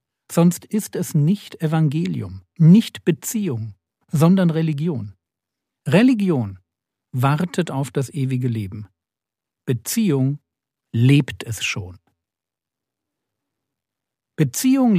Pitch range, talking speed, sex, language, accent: 120-180 Hz, 80 wpm, male, German, German